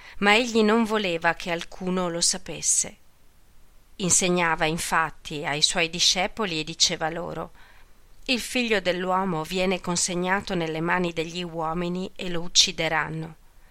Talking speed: 125 wpm